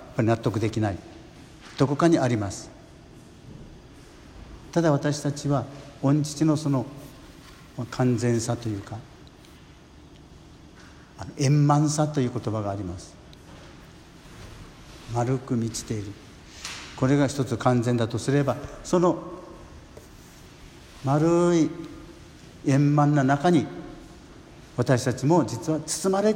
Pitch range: 115-145 Hz